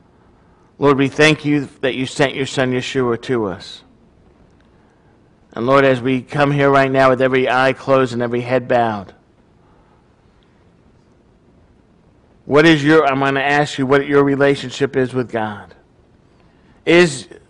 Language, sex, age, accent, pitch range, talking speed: English, male, 50-69, American, 120-140 Hz, 145 wpm